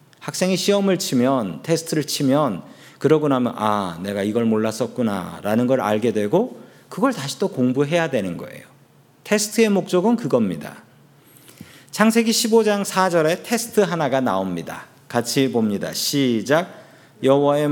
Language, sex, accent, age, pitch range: Korean, male, native, 40-59, 125-185 Hz